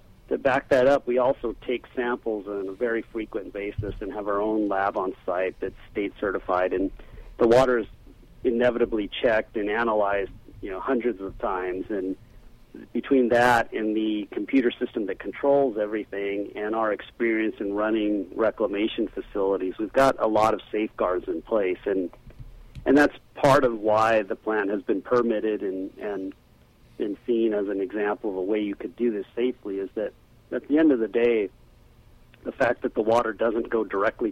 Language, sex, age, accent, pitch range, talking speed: English, male, 40-59, American, 100-120 Hz, 180 wpm